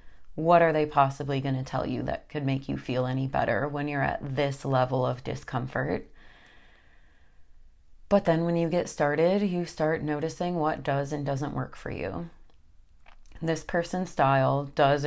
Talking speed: 165 wpm